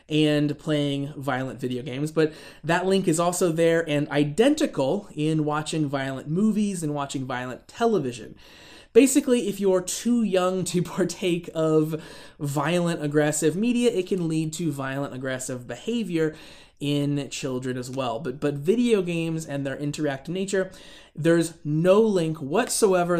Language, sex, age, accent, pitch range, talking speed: English, male, 20-39, American, 140-195 Hz, 140 wpm